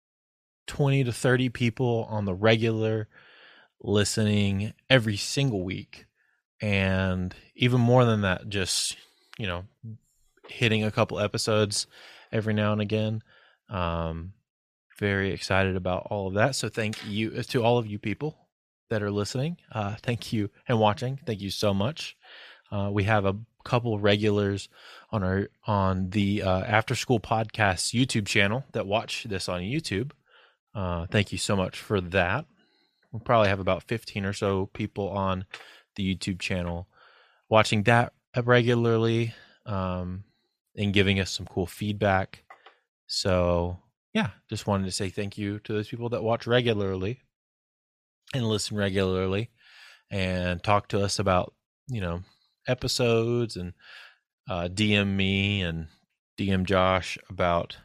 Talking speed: 145 wpm